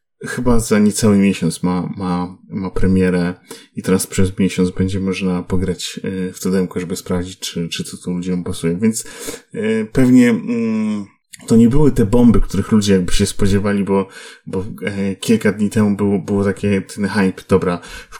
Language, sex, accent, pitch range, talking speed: Polish, male, native, 95-115 Hz, 170 wpm